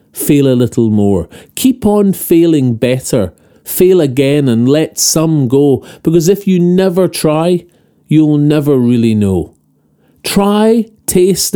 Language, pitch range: English, 120-170 Hz